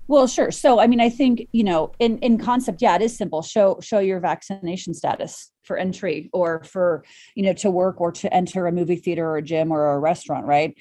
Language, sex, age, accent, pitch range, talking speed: English, female, 30-49, American, 170-220 Hz, 235 wpm